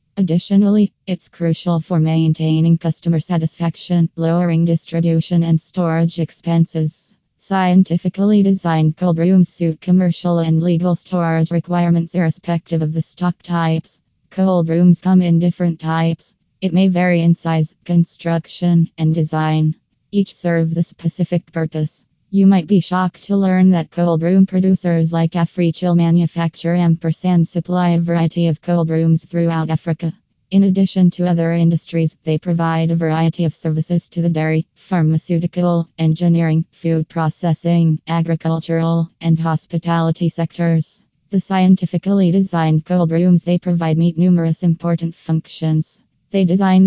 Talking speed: 130 wpm